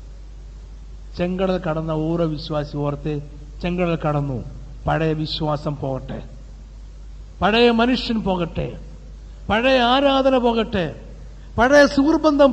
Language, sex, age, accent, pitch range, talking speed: Malayalam, male, 60-79, native, 160-230 Hz, 85 wpm